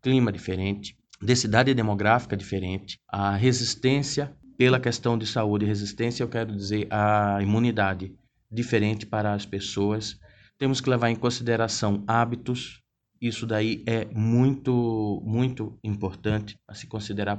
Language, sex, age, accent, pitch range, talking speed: Portuguese, male, 20-39, Brazilian, 105-120 Hz, 130 wpm